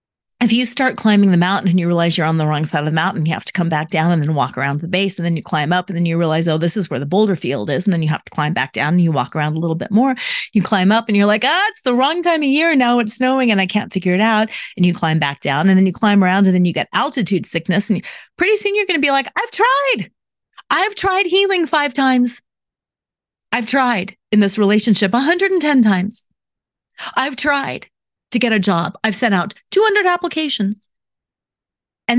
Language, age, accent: English, 30-49, American